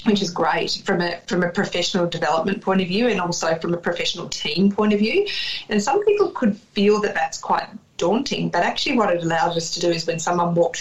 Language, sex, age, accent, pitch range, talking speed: English, female, 30-49, Australian, 175-220 Hz, 235 wpm